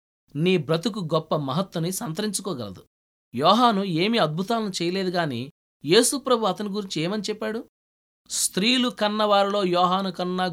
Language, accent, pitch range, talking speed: Telugu, native, 150-210 Hz, 105 wpm